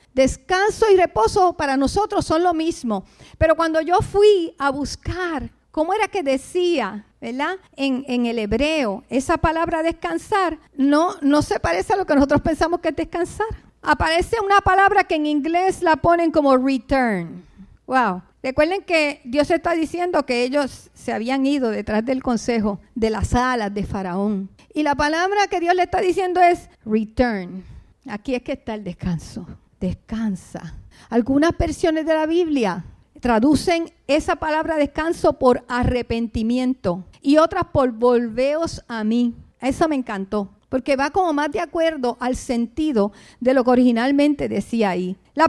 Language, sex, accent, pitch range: English, female, American, 245-335 Hz